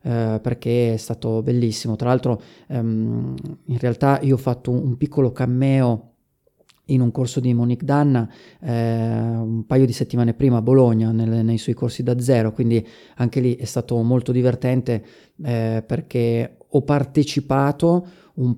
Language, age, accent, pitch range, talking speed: Italian, 30-49, native, 115-130 Hz, 140 wpm